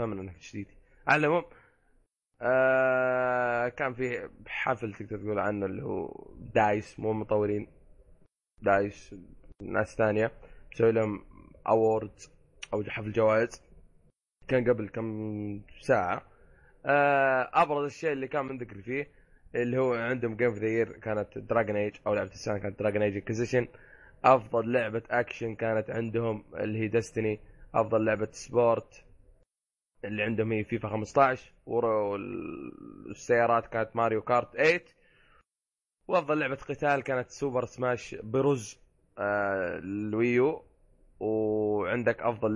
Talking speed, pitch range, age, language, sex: 115 wpm, 105-120 Hz, 20-39, Arabic, male